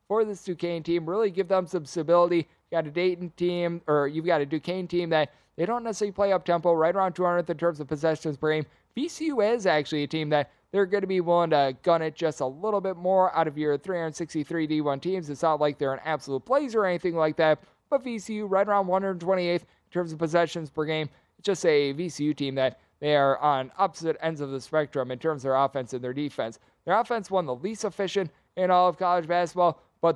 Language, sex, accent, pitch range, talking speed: English, male, American, 150-180 Hz, 235 wpm